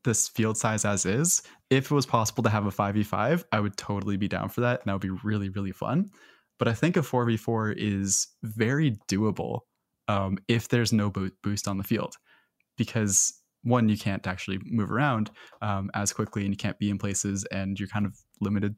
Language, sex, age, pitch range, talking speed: English, male, 20-39, 100-120 Hz, 205 wpm